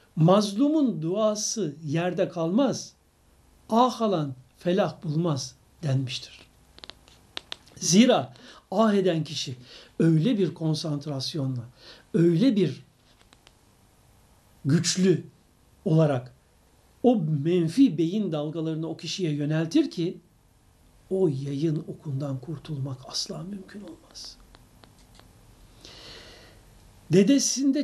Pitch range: 140-190 Hz